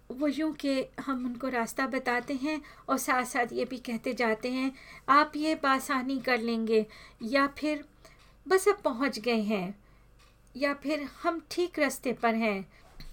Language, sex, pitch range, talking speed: Hindi, female, 220-265 Hz, 160 wpm